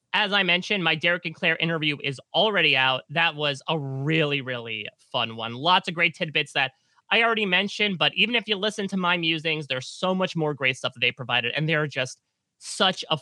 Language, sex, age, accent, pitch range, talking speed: English, male, 30-49, American, 135-210 Hz, 220 wpm